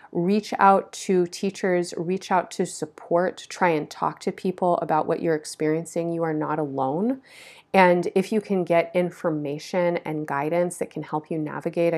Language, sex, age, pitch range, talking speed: English, female, 30-49, 160-190 Hz, 170 wpm